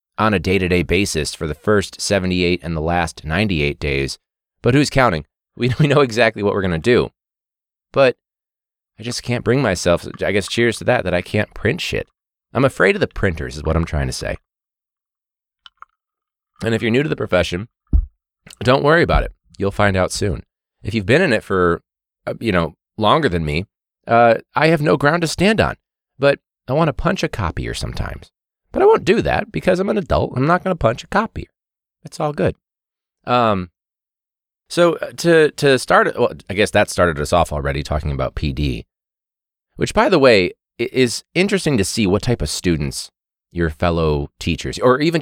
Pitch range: 80-130 Hz